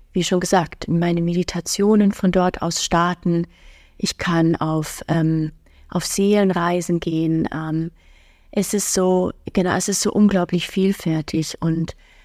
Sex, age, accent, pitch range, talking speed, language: female, 30-49, German, 170-200 Hz, 130 wpm, German